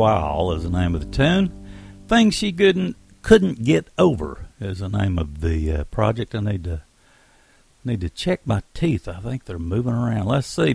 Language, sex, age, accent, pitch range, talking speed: English, male, 60-79, American, 90-115 Hz, 195 wpm